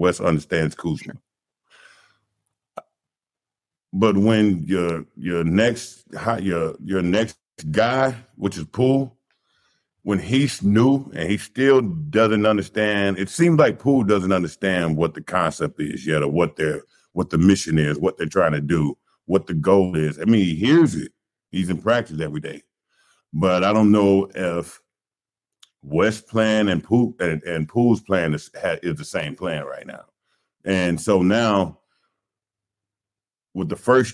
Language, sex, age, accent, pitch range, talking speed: English, male, 50-69, American, 85-110 Hz, 150 wpm